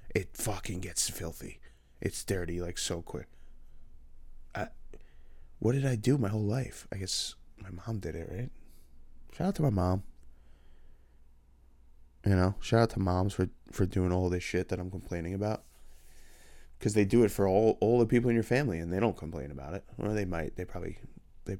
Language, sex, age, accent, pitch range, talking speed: English, male, 20-39, American, 75-100 Hz, 195 wpm